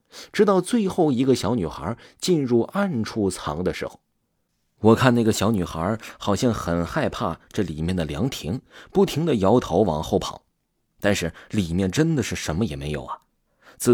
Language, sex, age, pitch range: Chinese, male, 30-49, 85-120 Hz